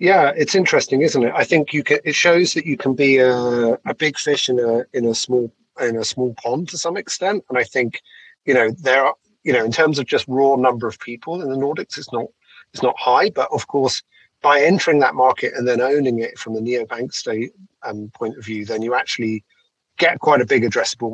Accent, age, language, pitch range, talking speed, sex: British, 30-49, English, 115-145 Hz, 235 wpm, male